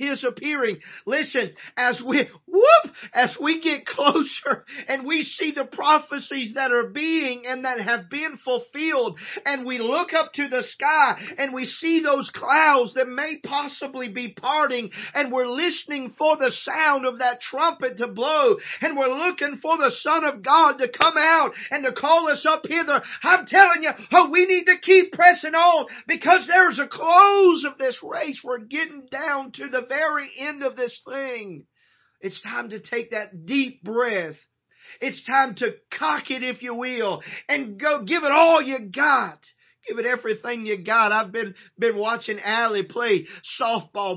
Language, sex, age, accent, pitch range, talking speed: English, male, 40-59, American, 245-310 Hz, 175 wpm